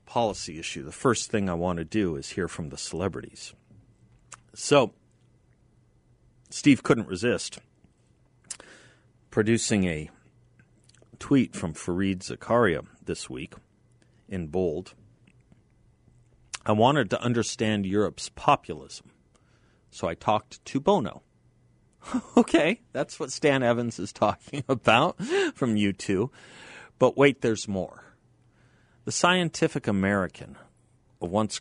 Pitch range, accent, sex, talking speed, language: 105-140 Hz, American, male, 110 wpm, English